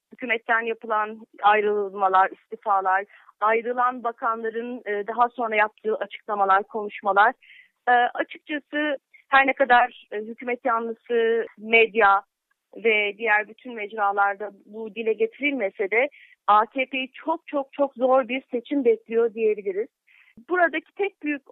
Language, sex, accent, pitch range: English, female, Turkish, 225-270 Hz